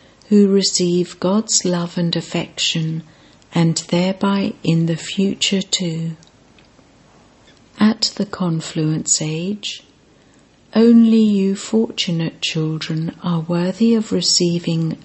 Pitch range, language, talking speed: 165-200 Hz, English, 95 wpm